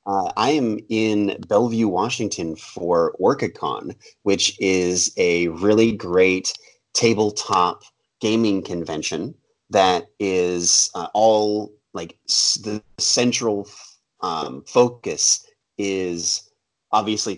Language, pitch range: English, 85-105 Hz